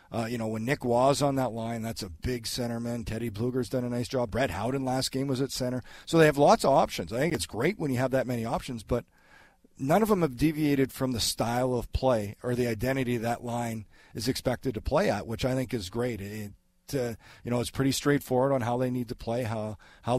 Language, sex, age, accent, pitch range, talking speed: English, male, 40-59, American, 115-130 Hz, 250 wpm